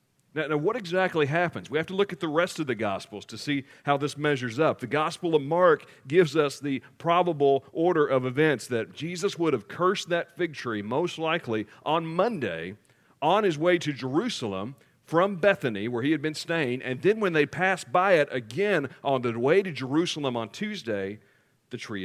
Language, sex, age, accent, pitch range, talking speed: English, male, 40-59, American, 135-175 Hz, 200 wpm